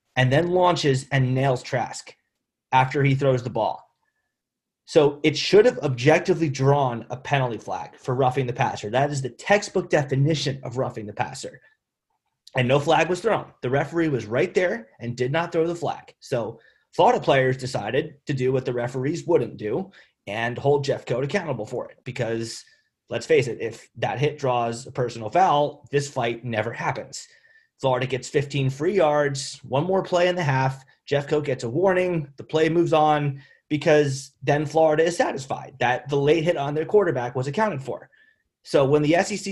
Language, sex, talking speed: English, male, 185 wpm